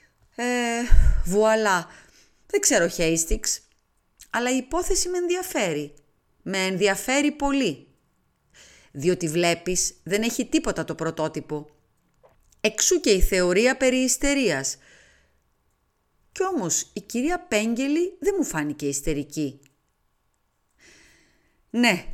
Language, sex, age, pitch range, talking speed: Greek, female, 30-49, 160-260 Hz, 100 wpm